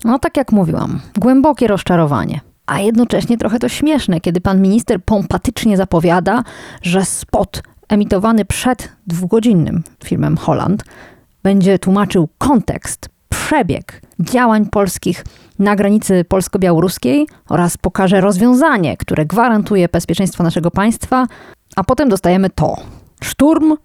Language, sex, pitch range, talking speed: Polish, female, 185-250 Hz, 115 wpm